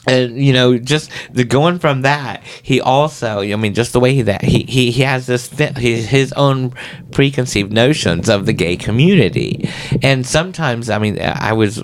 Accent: American